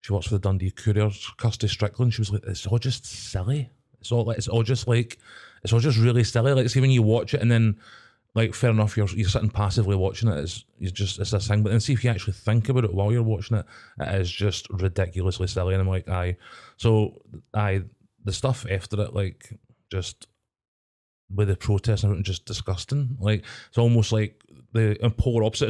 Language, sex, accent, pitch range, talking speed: English, male, British, 100-115 Hz, 215 wpm